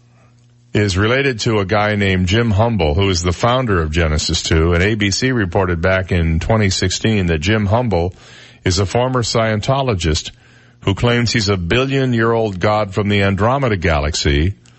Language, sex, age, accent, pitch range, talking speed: English, male, 50-69, American, 100-120 Hz, 155 wpm